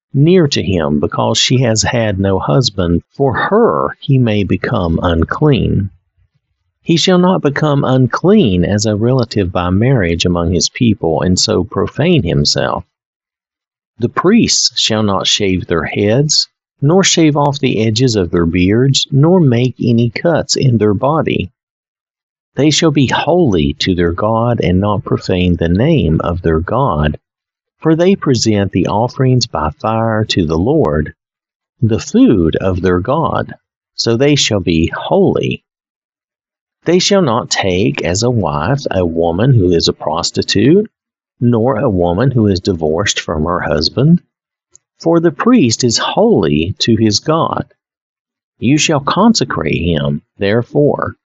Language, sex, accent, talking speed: English, male, American, 145 wpm